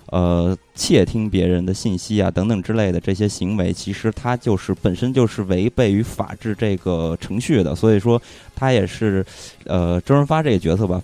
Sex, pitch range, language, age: male, 95-120 Hz, Chinese, 20-39